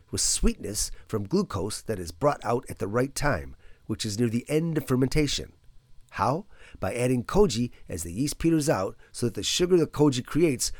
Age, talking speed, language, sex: 40-59, 195 wpm, English, male